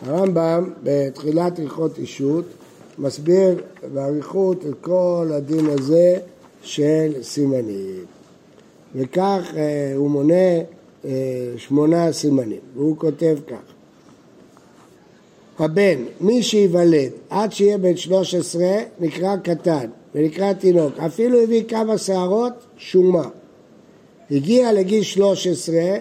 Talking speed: 95 wpm